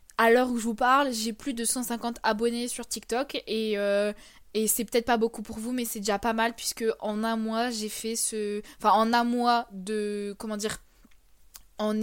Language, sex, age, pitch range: French, female, 20-39, 215-250 Hz